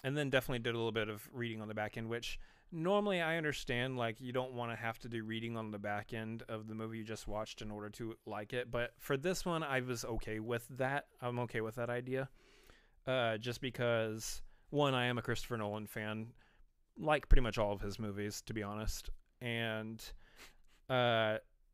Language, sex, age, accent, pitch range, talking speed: English, male, 30-49, American, 105-120 Hz, 210 wpm